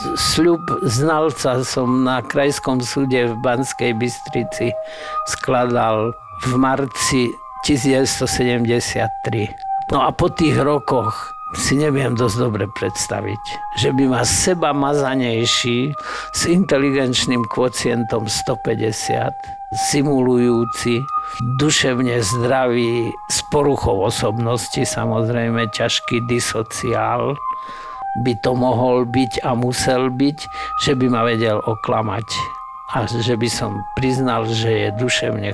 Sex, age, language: male, 50-69, Slovak